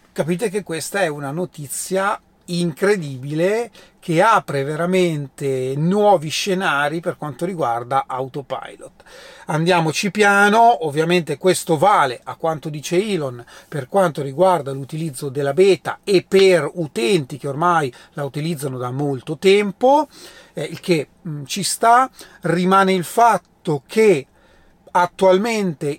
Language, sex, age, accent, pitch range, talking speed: Italian, male, 40-59, native, 155-200 Hz, 115 wpm